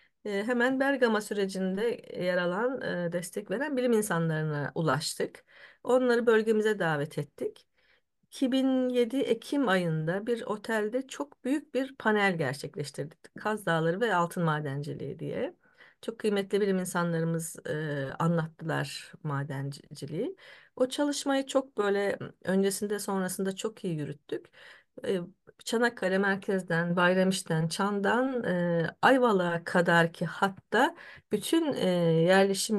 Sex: female